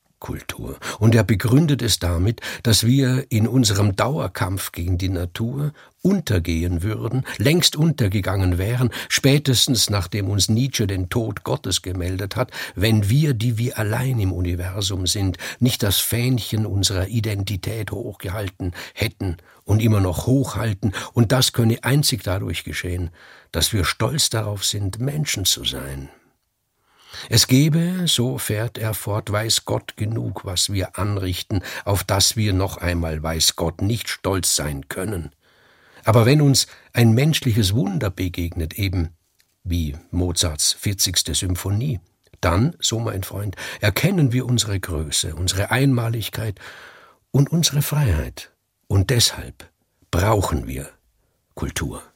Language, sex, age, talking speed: German, male, 60-79, 130 wpm